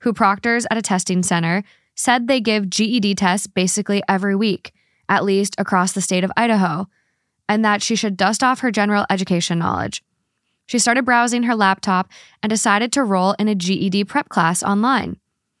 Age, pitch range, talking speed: 20-39, 185-220 Hz, 175 wpm